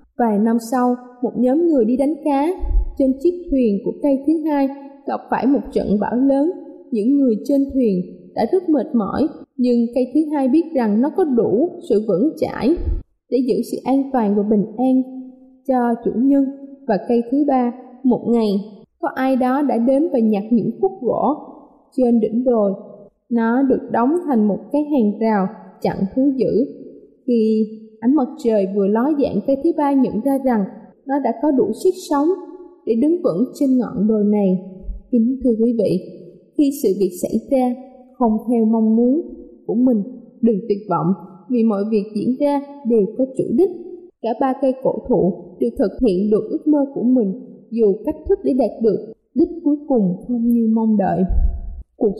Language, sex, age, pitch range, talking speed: Vietnamese, female, 20-39, 220-275 Hz, 185 wpm